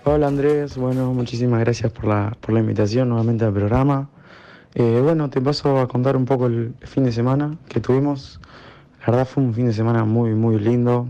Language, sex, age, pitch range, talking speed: Spanish, male, 20-39, 105-120 Hz, 200 wpm